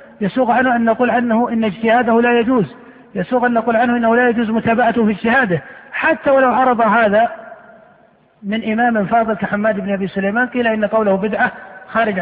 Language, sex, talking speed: Arabic, male, 170 wpm